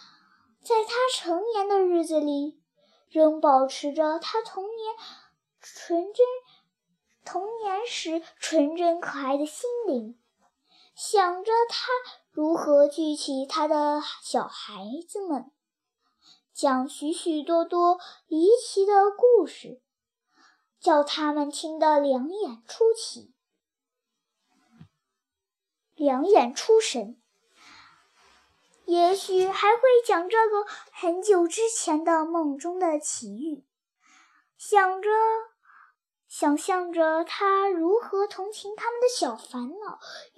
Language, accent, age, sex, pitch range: Chinese, native, 10-29, male, 300-410 Hz